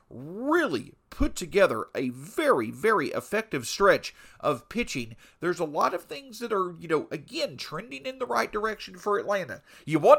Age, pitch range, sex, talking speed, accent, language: 40-59, 140-235 Hz, male, 170 wpm, American, English